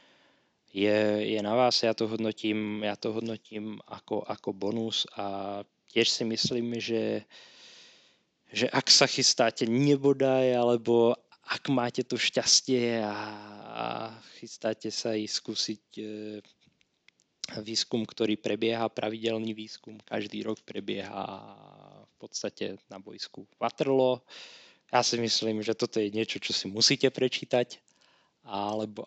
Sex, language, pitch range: male, Slovak, 105-125 Hz